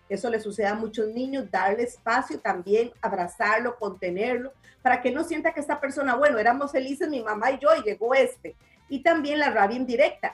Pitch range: 220-280 Hz